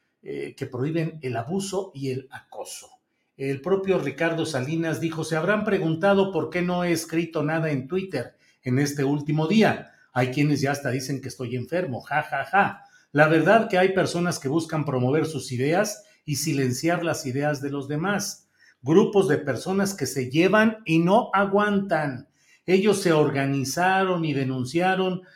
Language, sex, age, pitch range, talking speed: Spanish, male, 50-69, 135-180 Hz, 165 wpm